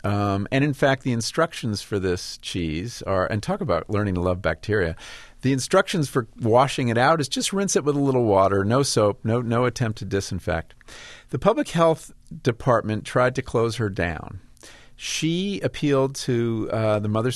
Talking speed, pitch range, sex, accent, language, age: 185 wpm, 100-135 Hz, male, American, English, 50-69